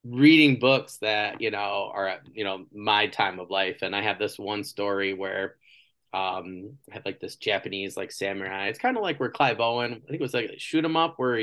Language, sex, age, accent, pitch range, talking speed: English, male, 20-39, American, 100-120 Hz, 225 wpm